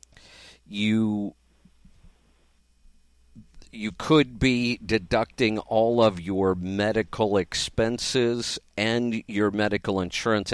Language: English